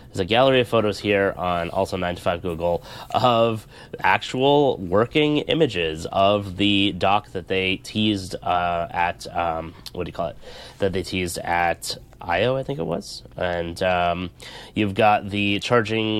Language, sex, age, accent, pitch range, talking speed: English, male, 20-39, American, 85-115 Hz, 165 wpm